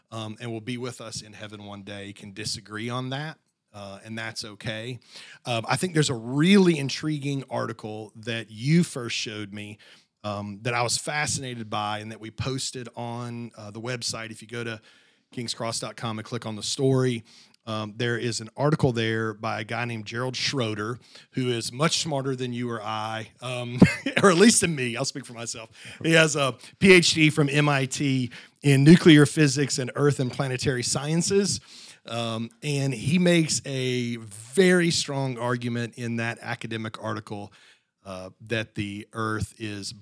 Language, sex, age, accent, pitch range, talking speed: English, male, 40-59, American, 105-130 Hz, 175 wpm